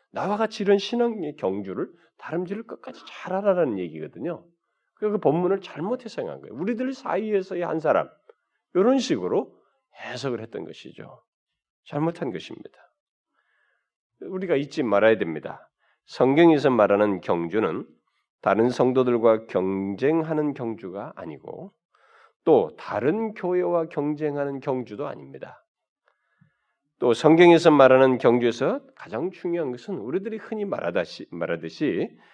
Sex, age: male, 40-59